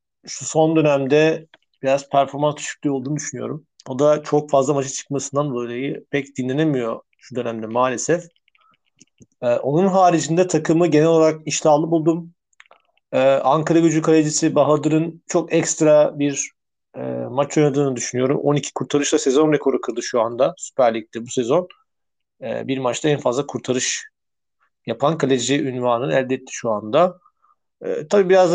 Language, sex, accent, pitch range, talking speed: Turkish, male, native, 130-160 Hz, 140 wpm